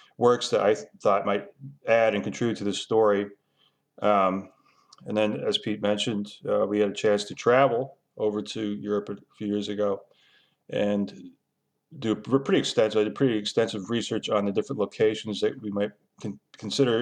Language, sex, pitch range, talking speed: English, male, 100-110 Hz, 175 wpm